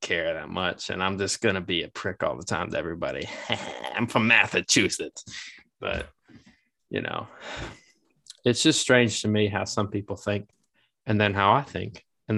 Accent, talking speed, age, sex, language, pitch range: American, 175 wpm, 20-39, male, English, 95-110 Hz